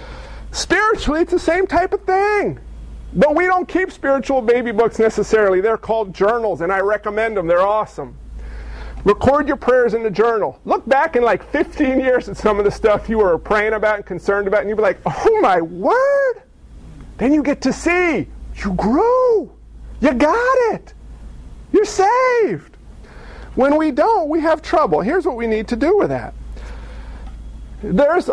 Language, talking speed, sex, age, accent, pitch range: English, 175 wpm, male, 40-59, American, 195-290 Hz